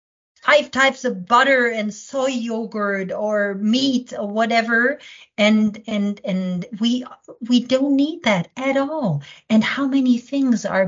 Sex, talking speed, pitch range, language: female, 145 wpm, 185-250 Hz, English